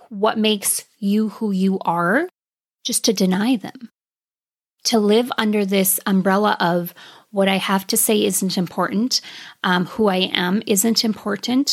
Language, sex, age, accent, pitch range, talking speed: English, female, 30-49, American, 185-225 Hz, 150 wpm